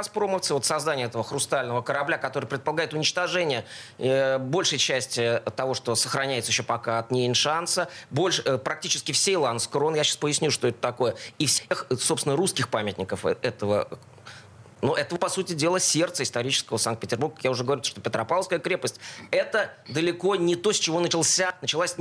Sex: male